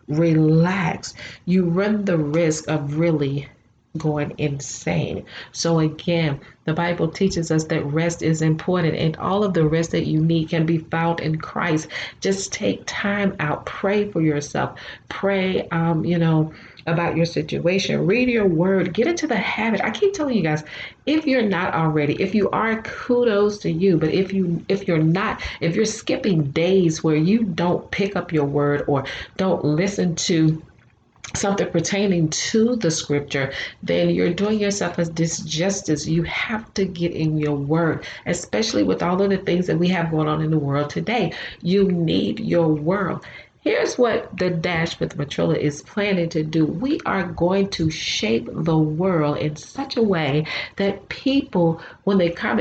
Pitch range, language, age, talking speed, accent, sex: 155-195 Hz, English, 40-59, 175 wpm, American, female